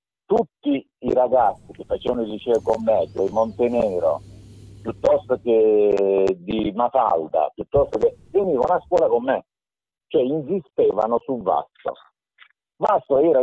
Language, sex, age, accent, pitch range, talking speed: Italian, male, 50-69, native, 105-165 Hz, 130 wpm